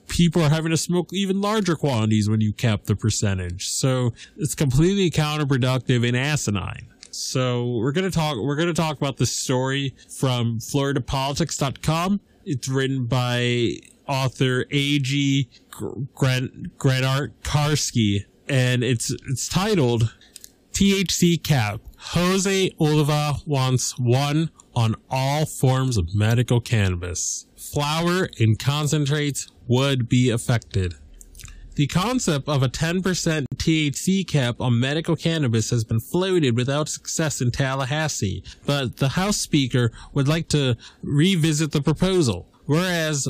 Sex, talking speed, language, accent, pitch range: male, 125 wpm, English, American, 125-160 Hz